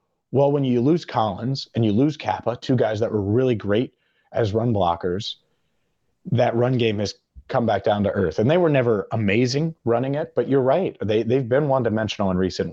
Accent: American